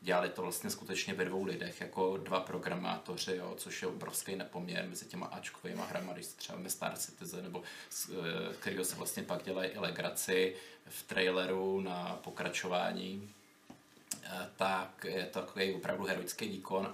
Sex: male